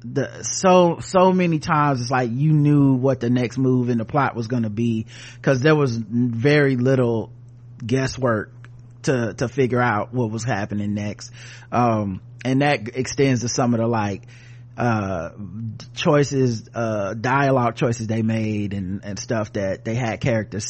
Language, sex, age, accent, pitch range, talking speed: English, male, 30-49, American, 120-150 Hz, 165 wpm